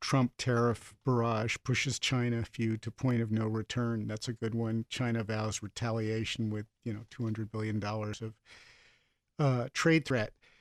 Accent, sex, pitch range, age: American, male, 115-135 Hz, 50-69